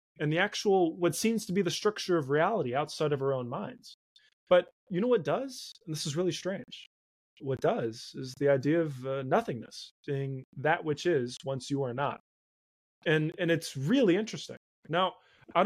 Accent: American